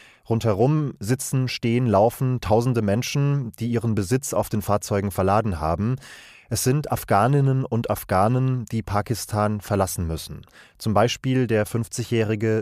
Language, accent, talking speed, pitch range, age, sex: German, German, 130 wpm, 100-130 Hz, 30-49, male